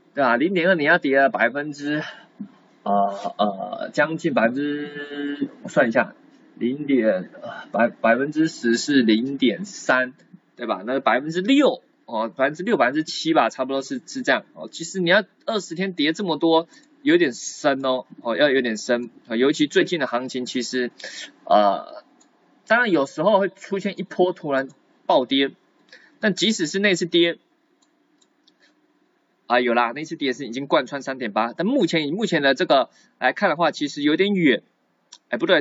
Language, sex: Chinese, male